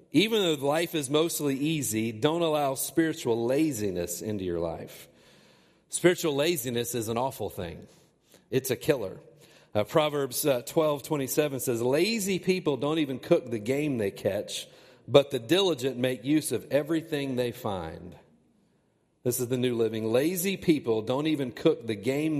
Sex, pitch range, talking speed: male, 115-155 Hz, 160 wpm